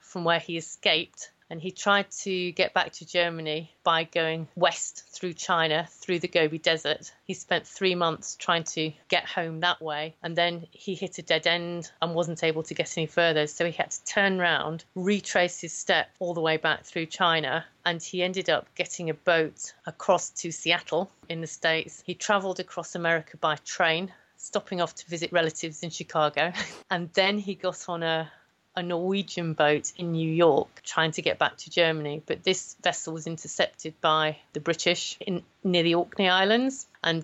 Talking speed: 190 wpm